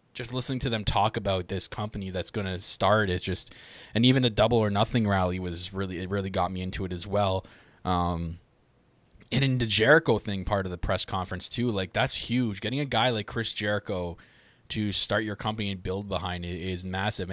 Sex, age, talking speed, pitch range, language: male, 20-39, 210 wpm, 95-120 Hz, English